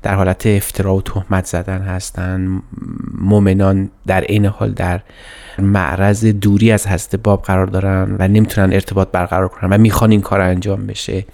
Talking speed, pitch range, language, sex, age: 160 wpm, 95-115 Hz, Persian, male, 30-49